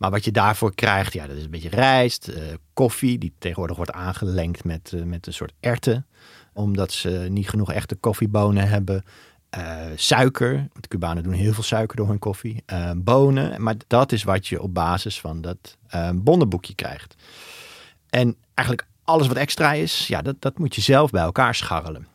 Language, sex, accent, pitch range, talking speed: Dutch, male, Dutch, 90-115 Hz, 190 wpm